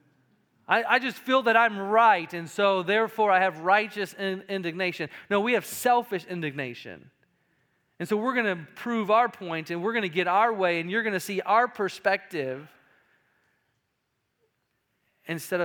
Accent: American